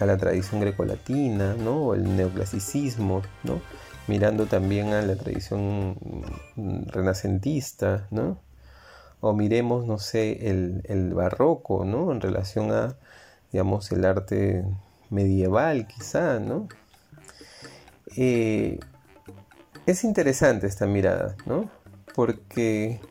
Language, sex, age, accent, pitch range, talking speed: Spanish, male, 30-49, Argentinian, 95-130 Hz, 105 wpm